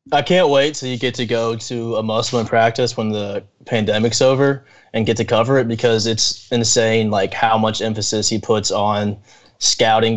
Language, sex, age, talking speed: English, male, 20-39, 190 wpm